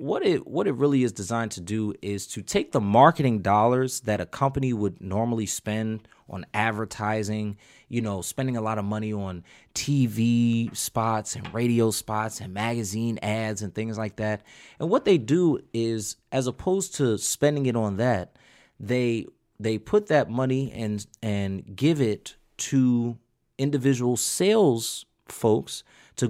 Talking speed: 155 wpm